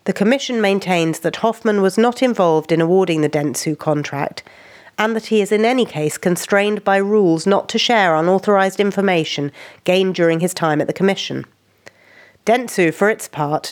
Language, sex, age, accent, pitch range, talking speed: English, female, 40-59, British, 155-210 Hz, 170 wpm